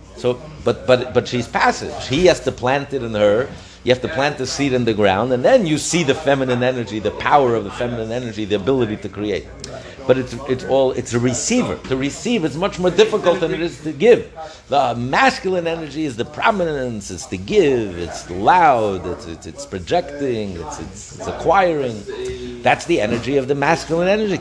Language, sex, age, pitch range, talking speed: English, male, 60-79, 130-185 Hz, 205 wpm